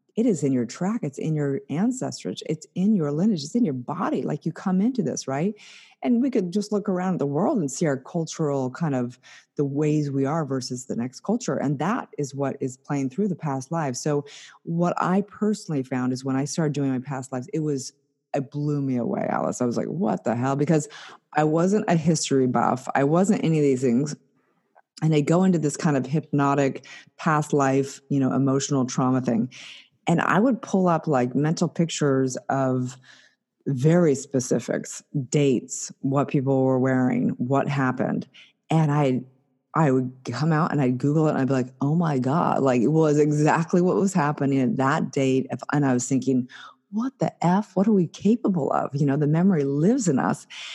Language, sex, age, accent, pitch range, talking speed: English, female, 30-49, American, 135-170 Hz, 205 wpm